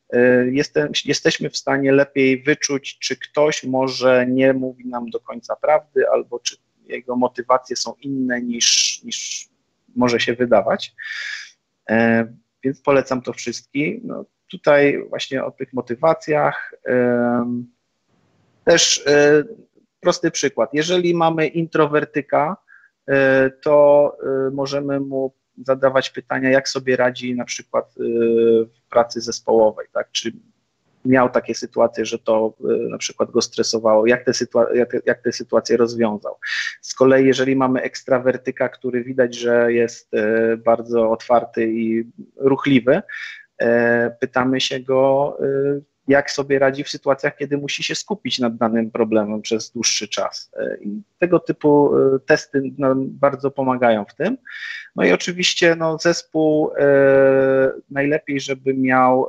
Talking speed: 130 wpm